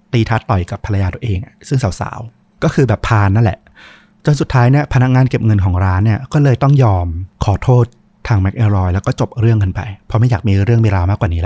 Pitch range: 95-120 Hz